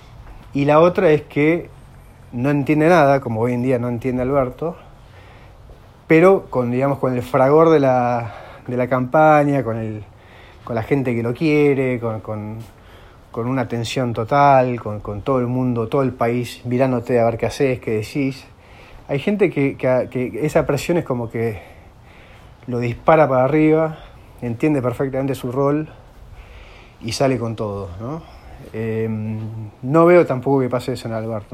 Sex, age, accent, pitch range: male, 30-49, Argentinian, 110-140 Hz